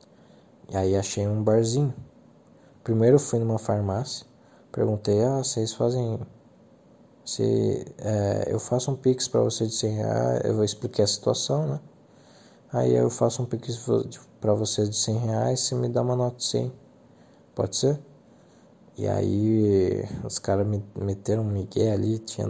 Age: 20-39